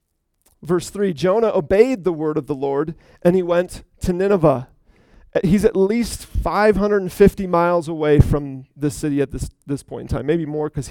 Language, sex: English, male